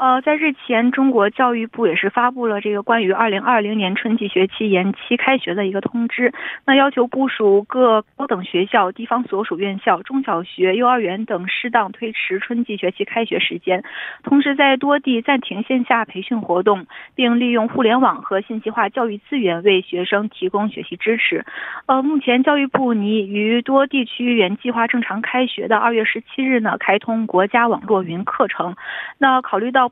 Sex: female